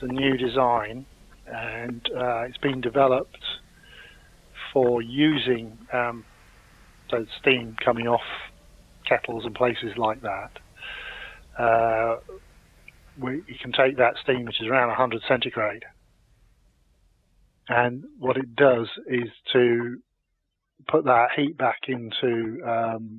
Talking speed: 110 wpm